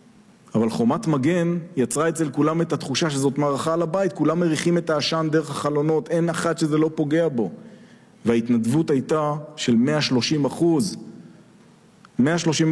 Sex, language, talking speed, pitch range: male, Hebrew, 140 wpm, 130-170 Hz